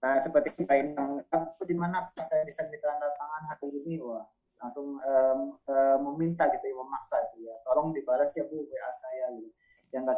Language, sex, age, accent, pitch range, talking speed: Indonesian, male, 20-39, native, 135-175 Hz, 195 wpm